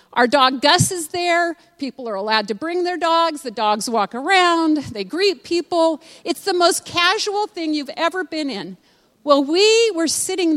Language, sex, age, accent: English, female, 50-69, American